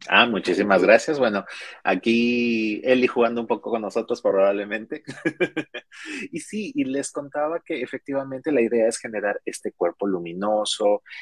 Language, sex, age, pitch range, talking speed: Spanish, male, 30-49, 100-130 Hz, 140 wpm